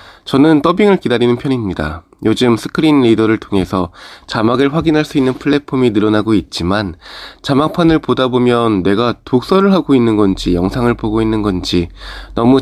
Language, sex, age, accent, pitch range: Korean, male, 20-39, native, 100-140 Hz